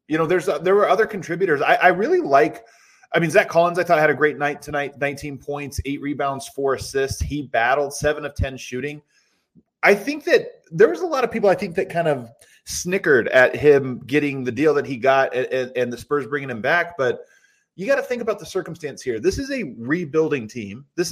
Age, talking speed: 30-49, 225 wpm